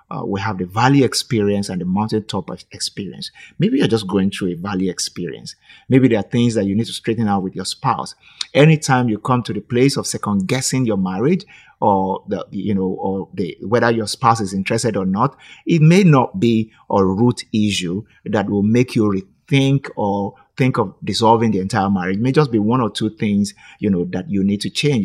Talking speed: 210 wpm